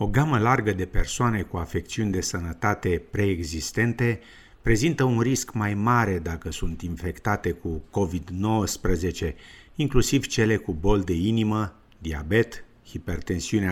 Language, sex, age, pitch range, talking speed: Romanian, male, 50-69, 90-120 Hz, 125 wpm